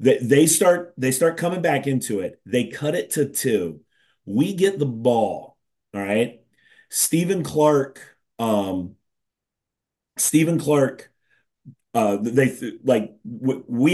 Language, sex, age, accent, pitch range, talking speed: English, male, 30-49, American, 125-175 Hz, 120 wpm